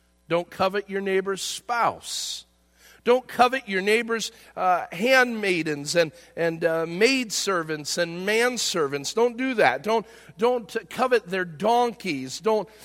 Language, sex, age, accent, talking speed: English, male, 50-69, American, 125 wpm